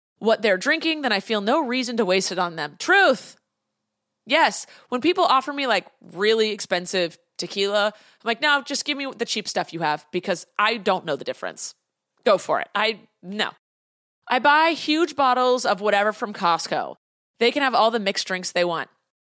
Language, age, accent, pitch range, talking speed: English, 30-49, American, 205-285 Hz, 195 wpm